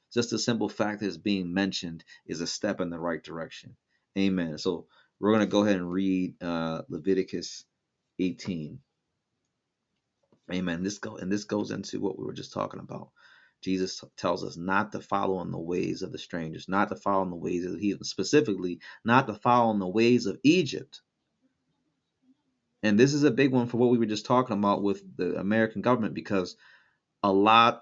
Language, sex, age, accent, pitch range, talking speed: English, male, 30-49, American, 95-120 Hz, 190 wpm